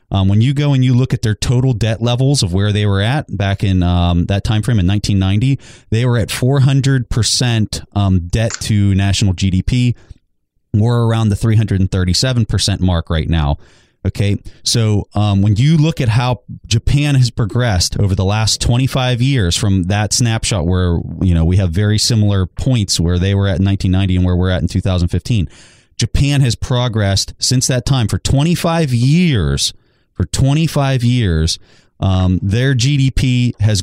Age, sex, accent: 30-49, male, American